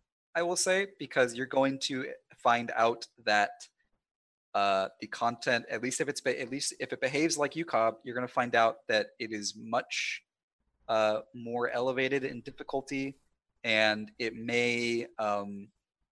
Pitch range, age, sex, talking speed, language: 110-130 Hz, 20-39, male, 165 wpm, English